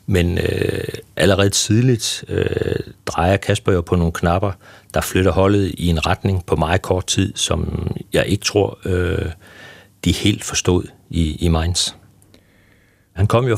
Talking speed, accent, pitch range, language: 155 wpm, native, 85-100 Hz, Danish